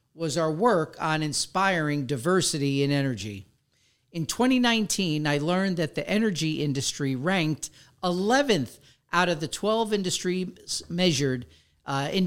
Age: 50-69